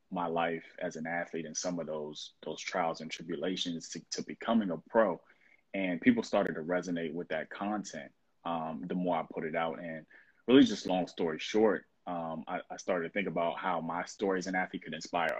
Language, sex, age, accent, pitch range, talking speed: English, male, 20-39, American, 85-100 Hz, 210 wpm